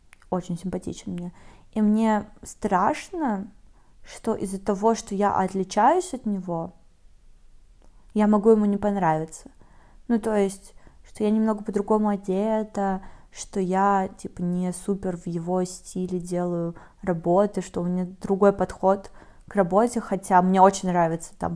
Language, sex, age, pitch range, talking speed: Russian, female, 20-39, 180-215 Hz, 135 wpm